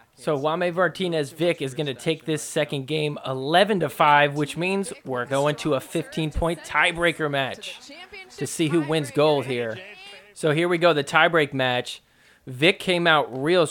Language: English